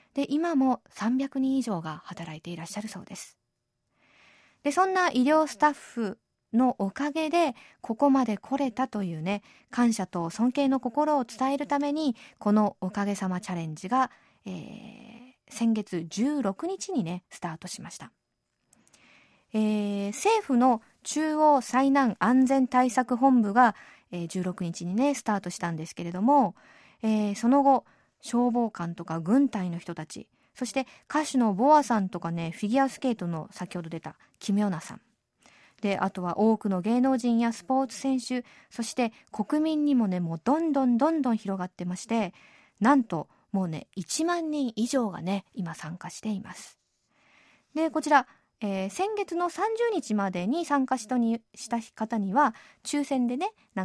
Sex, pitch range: female, 190-270 Hz